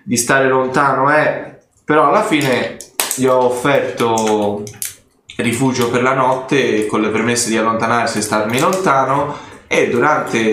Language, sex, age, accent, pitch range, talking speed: Italian, male, 20-39, native, 110-130 Hz, 135 wpm